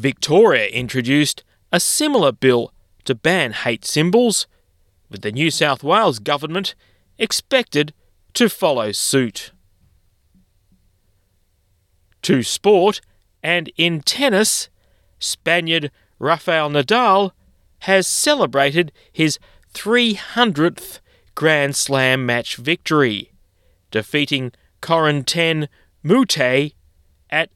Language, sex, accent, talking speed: English, male, Australian, 85 wpm